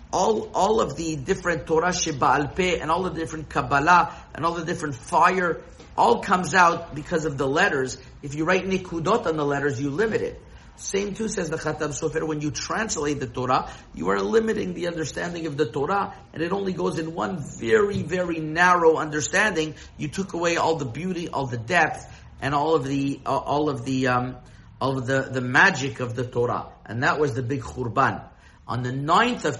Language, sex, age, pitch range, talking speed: English, male, 50-69, 130-165 Hz, 205 wpm